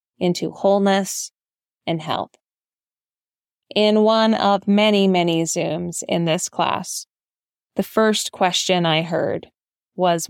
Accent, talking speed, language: American, 110 wpm, English